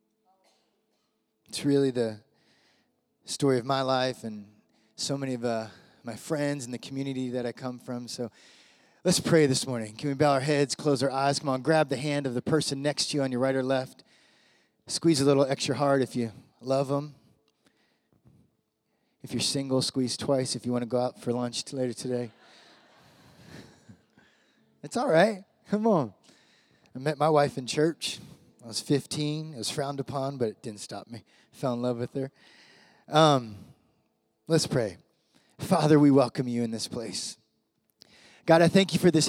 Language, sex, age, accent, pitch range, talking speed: English, male, 30-49, American, 125-150 Hz, 180 wpm